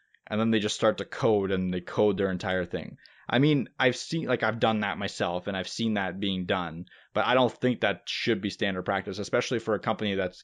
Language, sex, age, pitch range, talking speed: English, male, 20-39, 100-125 Hz, 240 wpm